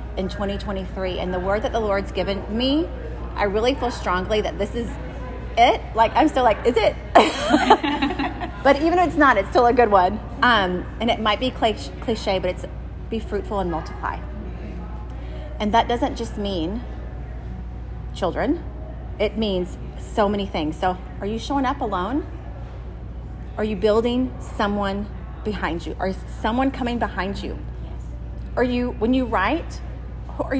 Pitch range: 175-245 Hz